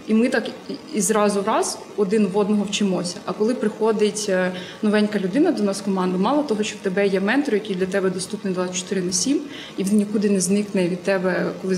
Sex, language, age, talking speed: female, Ukrainian, 20-39, 205 wpm